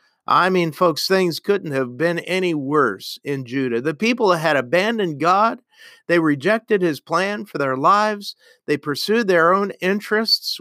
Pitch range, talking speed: 140-195 Hz, 160 wpm